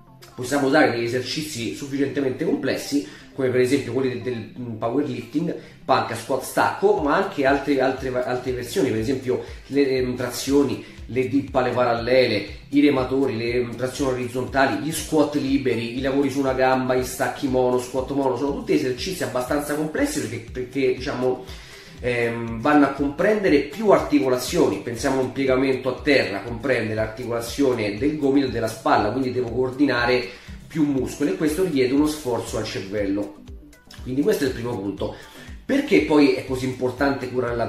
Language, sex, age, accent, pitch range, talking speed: Italian, male, 30-49, native, 120-140 Hz, 160 wpm